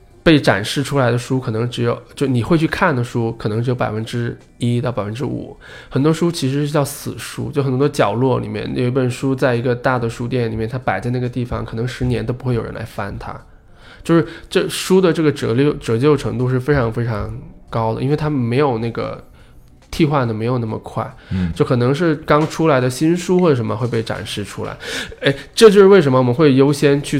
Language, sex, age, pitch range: Chinese, male, 20-39, 115-145 Hz